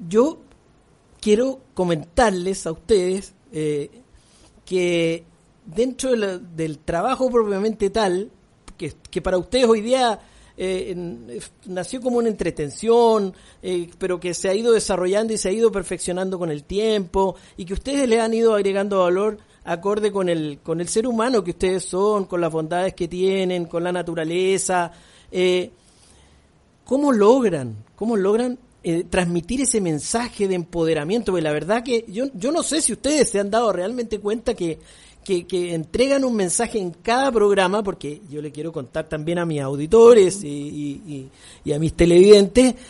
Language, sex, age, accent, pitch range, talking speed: Spanish, male, 50-69, Argentinian, 175-220 Hz, 165 wpm